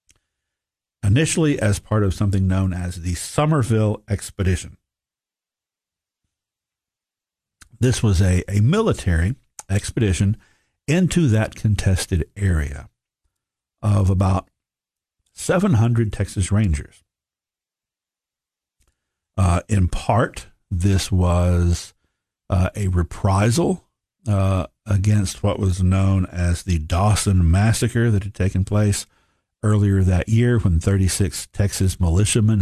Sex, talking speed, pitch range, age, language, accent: male, 100 wpm, 90-110 Hz, 60-79, English, American